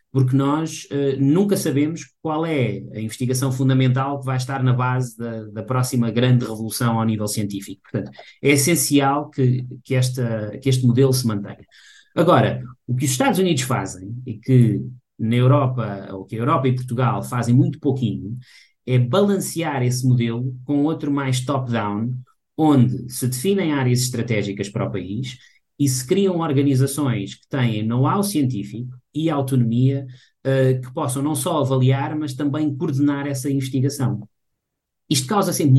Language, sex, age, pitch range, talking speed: Portuguese, male, 20-39, 125-145 Hz, 155 wpm